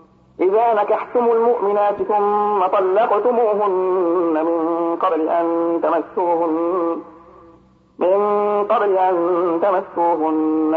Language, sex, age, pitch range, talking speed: Arabic, male, 50-69, 170-205 Hz, 70 wpm